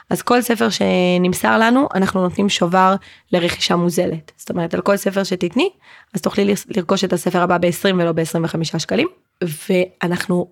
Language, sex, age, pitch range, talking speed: Hebrew, female, 20-39, 180-220 Hz, 155 wpm